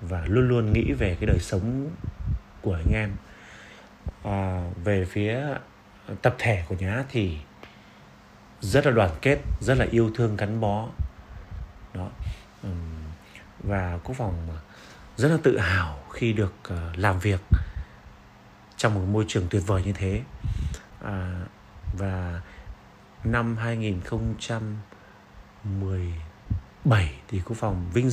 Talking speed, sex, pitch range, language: 125 wpm, male, 95-115 Hz, Vietnamese